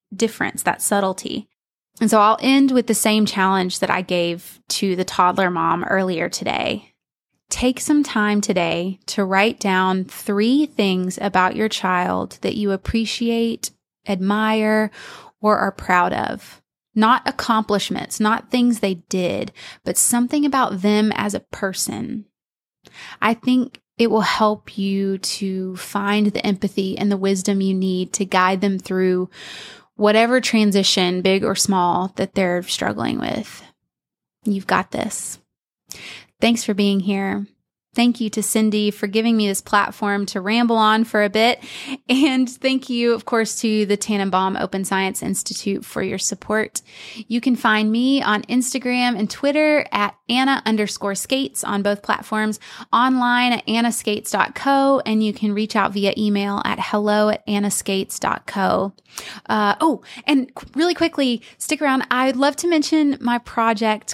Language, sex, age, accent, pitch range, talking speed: English, female, 20-39, American, 195-240 Hz, 150 wpm